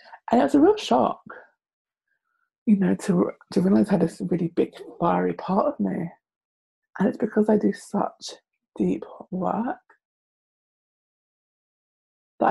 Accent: British